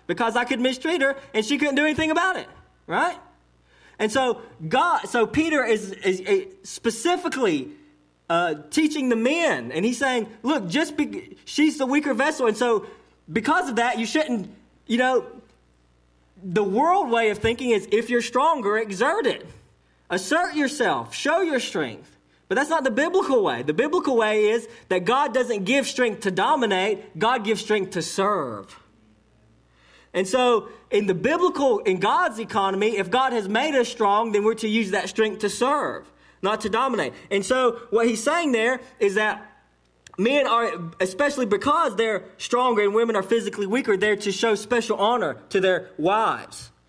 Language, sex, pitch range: English, male, 195-260 Hz